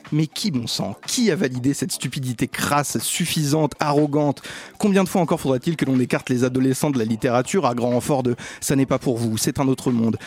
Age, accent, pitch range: 30-49, French, 115-140 Hz